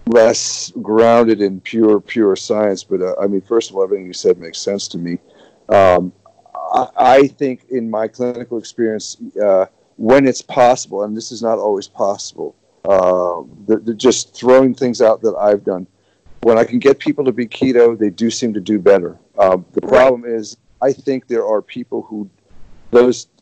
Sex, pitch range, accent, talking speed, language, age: male, 105-130 Hz, American, 190 wpm, English, 50-69